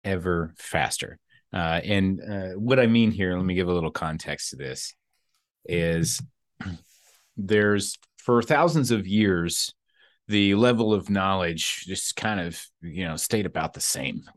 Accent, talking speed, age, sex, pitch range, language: American, 150 wpm, 30-49, male, 85-105 Hz, English